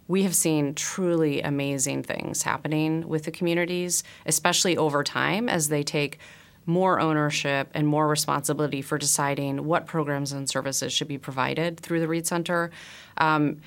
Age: 30-49